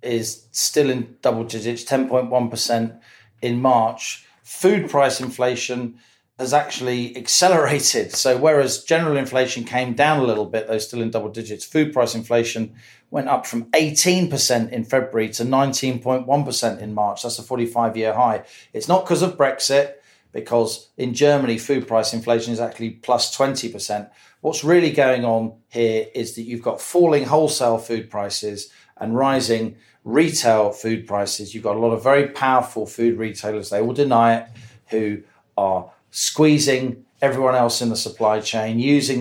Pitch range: 110-130 Hz